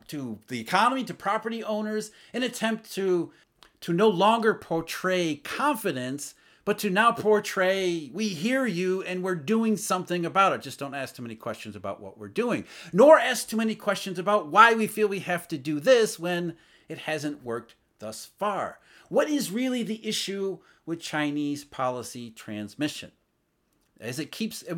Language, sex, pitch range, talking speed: English, male, 130-205 Hz, 165 wpm